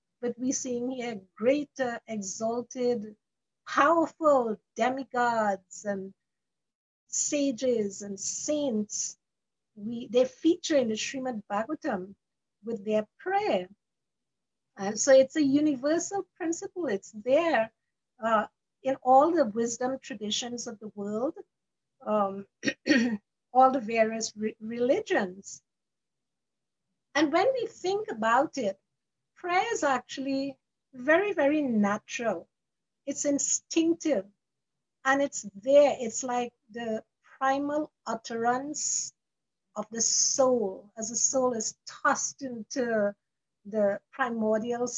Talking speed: 105 wpm